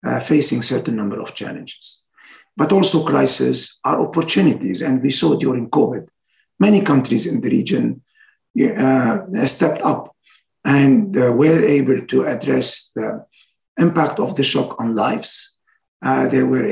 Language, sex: English, male